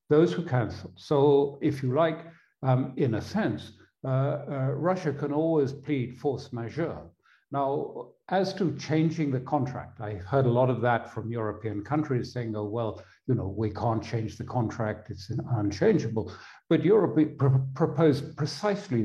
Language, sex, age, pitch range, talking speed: English, male, 60-79, 115-140 Hz, 160 wpm